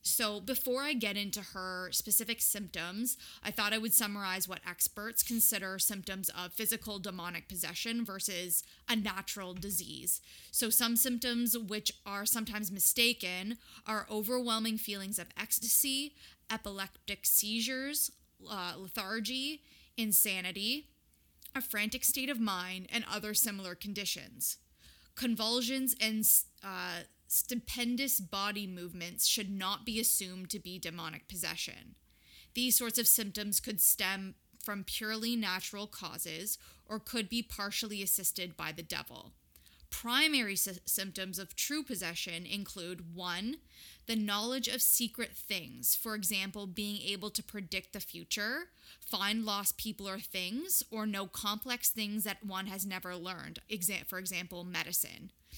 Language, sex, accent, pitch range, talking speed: English, female, American, 190-230 Hz, 130 wpm